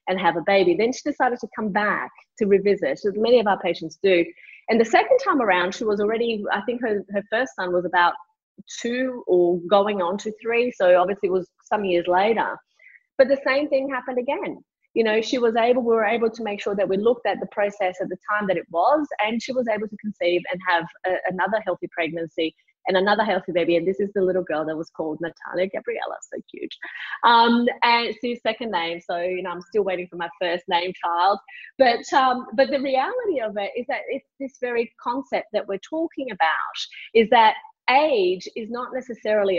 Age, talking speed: 30-49, 215 wpm